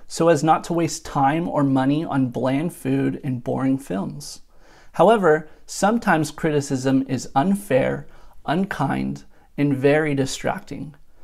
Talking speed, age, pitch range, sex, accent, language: 125 wpm, 30-49, 135-175 Hz, male, American, English